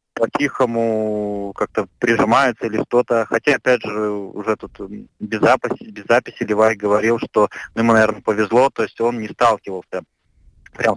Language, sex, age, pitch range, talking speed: Russian, male, 20-39, 95-115 Hz, 140 wpm